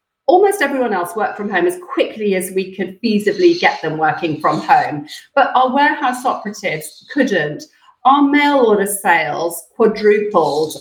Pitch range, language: 185-280 Hz, English